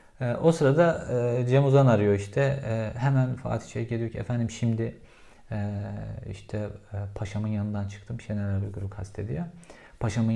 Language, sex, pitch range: Turkish, male, 105-130 Hz